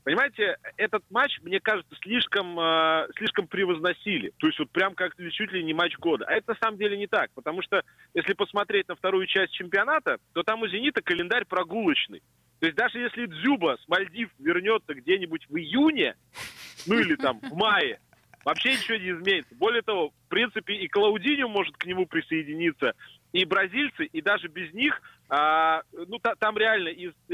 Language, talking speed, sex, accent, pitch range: Russian, 175 wpm, male, native, 165-230 Hz